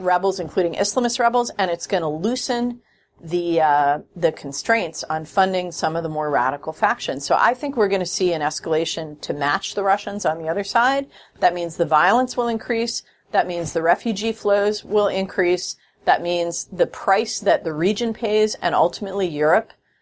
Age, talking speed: 40-59, 185 wpm